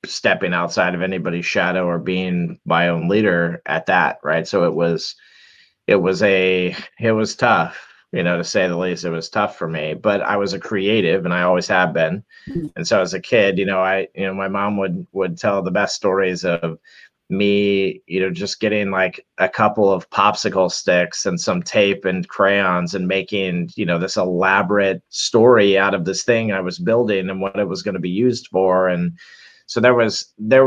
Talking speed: 205 wpm